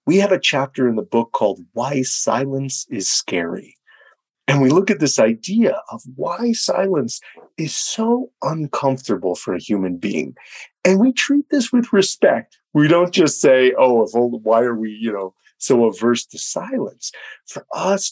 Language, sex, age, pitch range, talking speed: English, male, 40-59, 110-185 Hz, 170 wpm